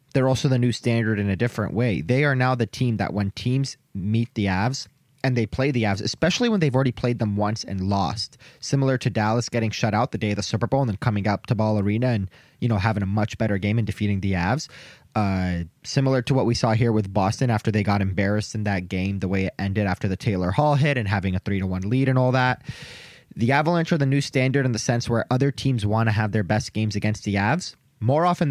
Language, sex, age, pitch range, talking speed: English, male, 20-39, 105-130 Hz, 255 wpm